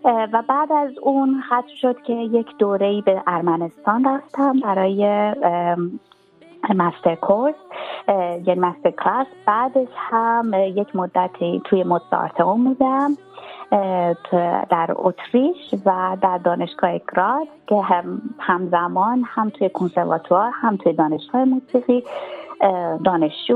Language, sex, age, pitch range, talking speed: Persian, female, 30-49, 175-255 Hz, 105 wpm